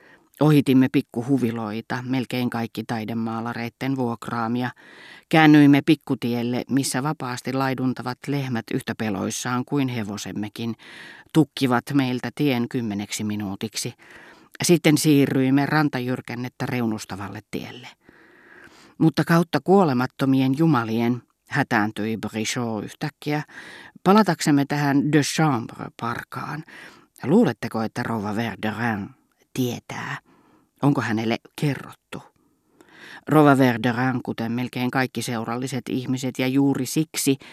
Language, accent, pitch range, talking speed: Finnish, native, 115-140 Hz, 90 wpm